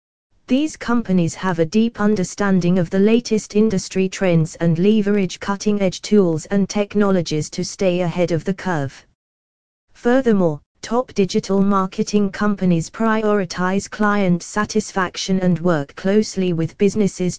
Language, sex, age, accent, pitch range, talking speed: English, female, 20-39, British, 170-210 Hz, 130 wpm